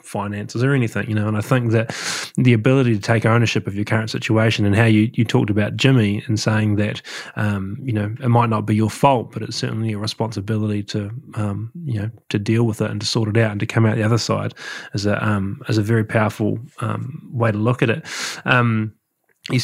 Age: 20-39